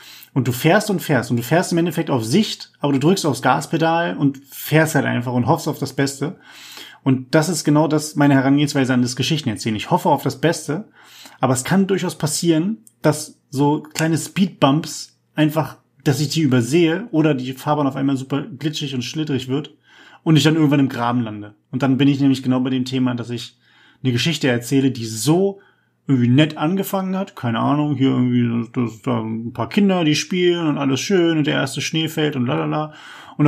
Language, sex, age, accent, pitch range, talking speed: German, male, 30-49, German, 130-160 Hz, 210 wpm